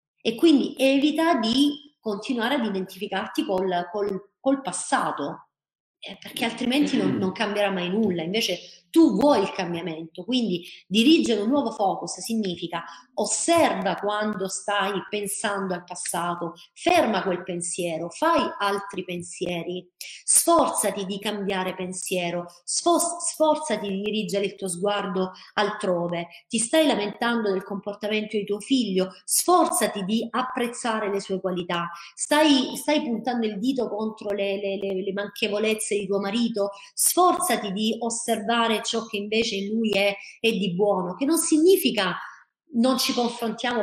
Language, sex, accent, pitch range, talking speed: Italian, female, native, 190-250 Hz, 135 wpm